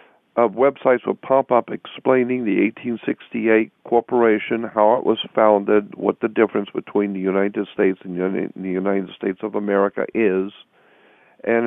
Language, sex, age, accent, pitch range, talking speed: English, male, 50-69, American, 100-115 Hz, 155 wpm